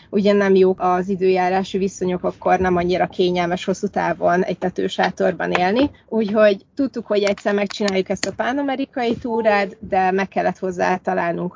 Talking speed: 150 wpm